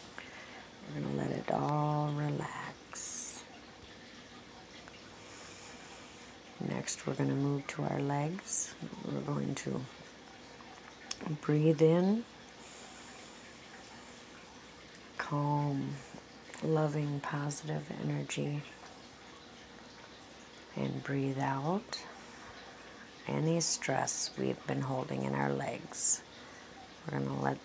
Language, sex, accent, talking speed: English, female, American, 85 wpm